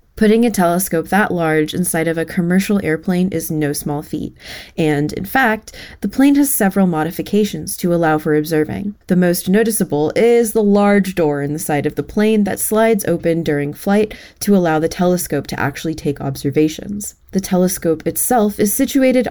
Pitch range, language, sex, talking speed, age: 150-205 Hz, English, female, 175 wpm, 20-39